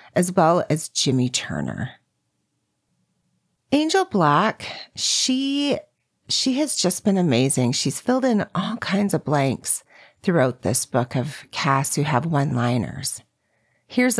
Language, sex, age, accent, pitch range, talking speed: English, female, 40-59, American, 130-195 Hz, 125 wpm